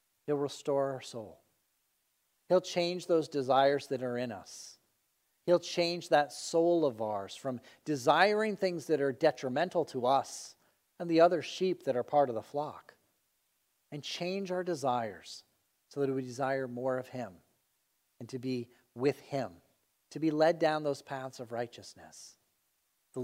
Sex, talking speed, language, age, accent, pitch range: male, 160 wpm, English, 40-59, American, 130-180 Hz